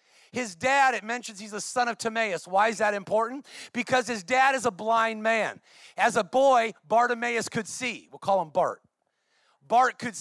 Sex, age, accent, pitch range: male, 40-59, American, 200-245 Hz